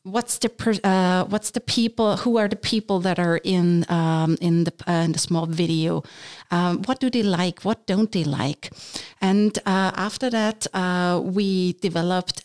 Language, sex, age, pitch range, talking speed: English, female, 50-69, 165-195 Hz, 185 wpm